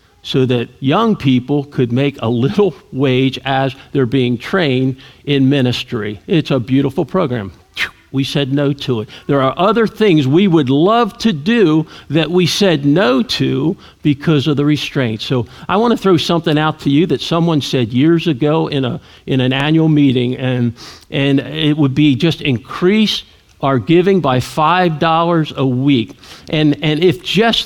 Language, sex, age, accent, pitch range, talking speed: English, male, 50-69, American, 130-175 Hz, 170 wpm